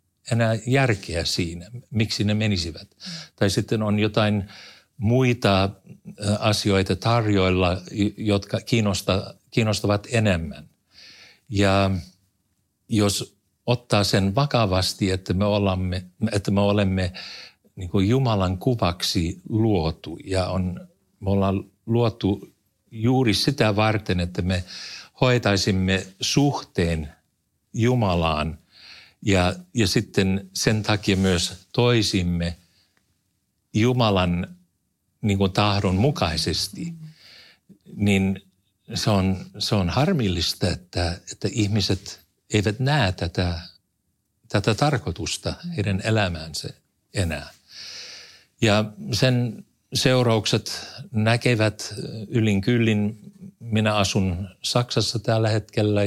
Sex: male